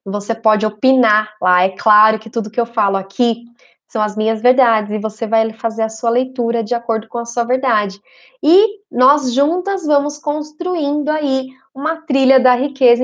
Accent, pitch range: Brazilian, 230-275 Hz